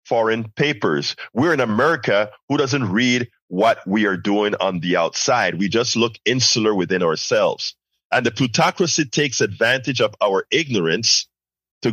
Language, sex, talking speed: English, male, 150 wpm